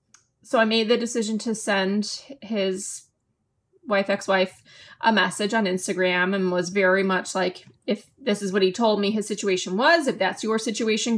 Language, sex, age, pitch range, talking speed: English, female, 20-39, 190-230 Hz, 175 wpm